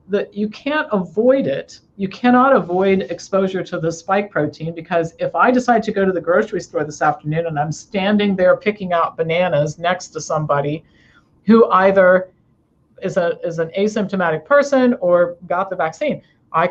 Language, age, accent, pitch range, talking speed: English, 50-69, American, 160-195 Hz, 170 wpm